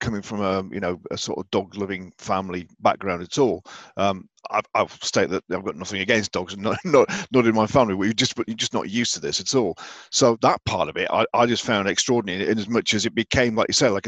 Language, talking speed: English, 250 wpm